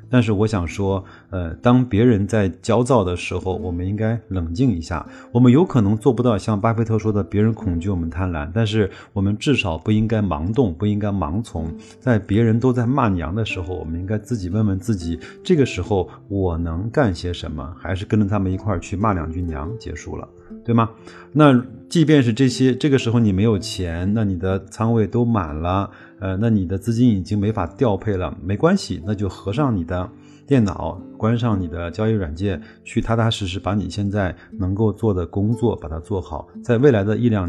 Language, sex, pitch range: Chinese, male, 90-115 Hz